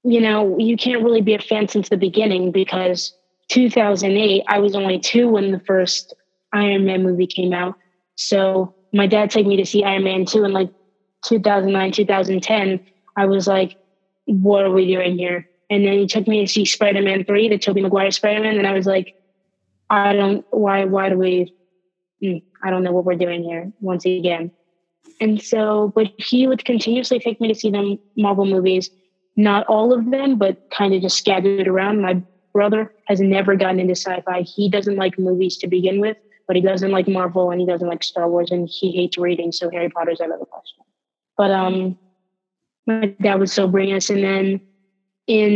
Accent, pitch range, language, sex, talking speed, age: American, 185-205 Hz, English, female, 195 wpm, 20-39